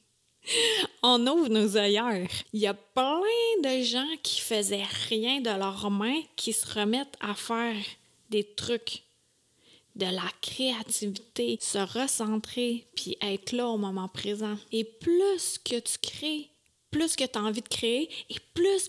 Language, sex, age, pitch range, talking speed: French, female, 30-49, 210-280 Hz, 155 wpm